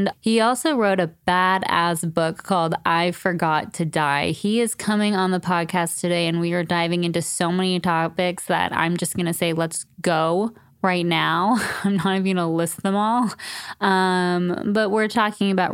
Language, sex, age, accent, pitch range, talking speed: English, female, 20-39, American, 170-200 Hz, 185 wpm